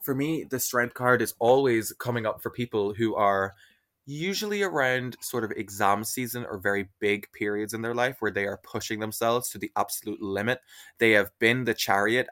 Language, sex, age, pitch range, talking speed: English, male, 20-39, 100-120 Hz, 195 wpm